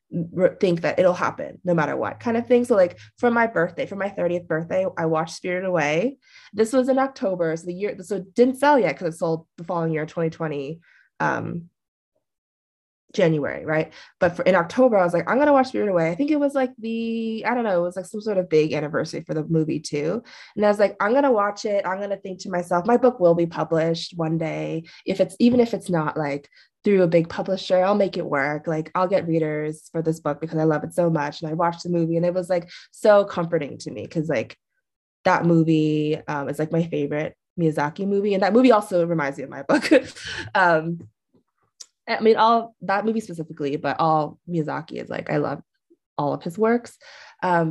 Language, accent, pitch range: English, American, 160-210 Hz